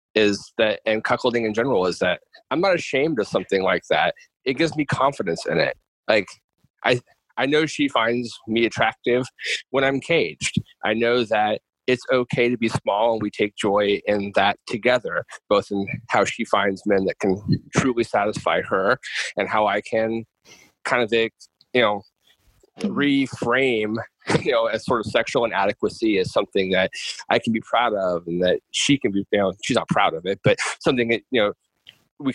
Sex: male